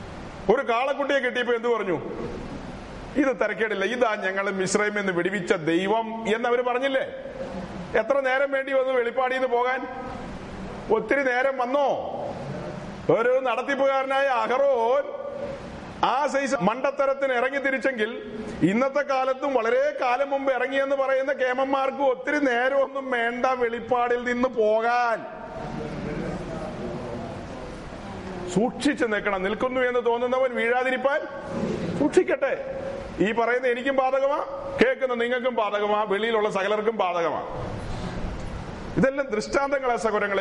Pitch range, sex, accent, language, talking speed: 230-275 Hz, male, native, Malayalam, 100 wpm